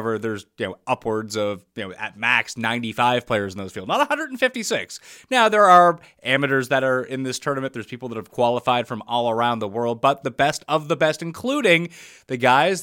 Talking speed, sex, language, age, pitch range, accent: 205 wpm, male, English, 30-49, 120-180 Hz, American